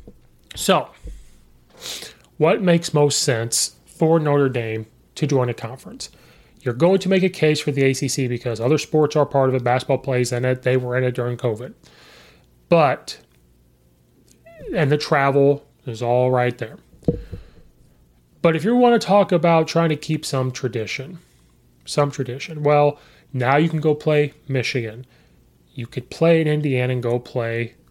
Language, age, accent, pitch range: English, 30-49, American, 120-155 Hz